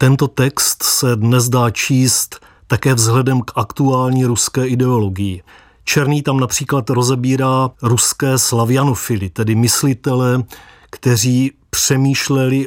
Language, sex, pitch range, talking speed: Czech, male, 115-145 Hz, 105 wpm